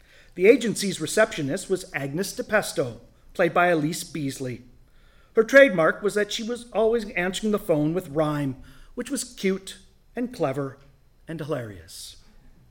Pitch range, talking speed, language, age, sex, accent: 145-210 Hz, 135 wpm, English, 40-59, male, American